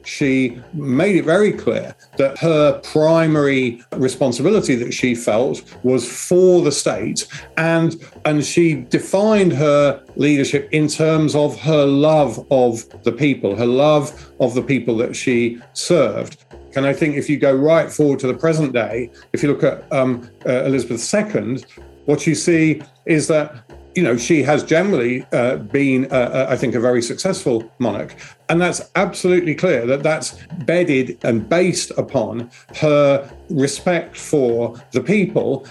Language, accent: English, British